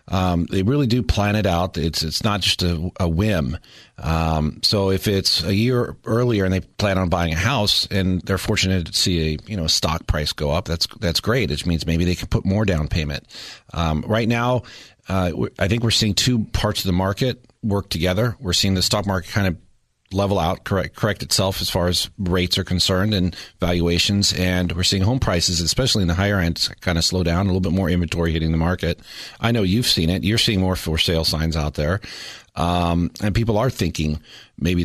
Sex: male